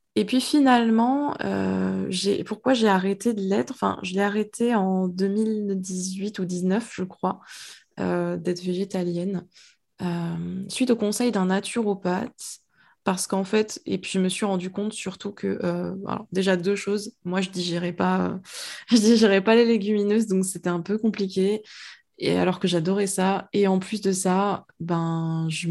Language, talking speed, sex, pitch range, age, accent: French, 160 wpm, female, 180-215 Hz, 20-39, French